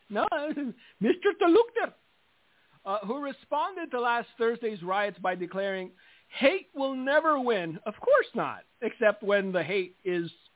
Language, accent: English, American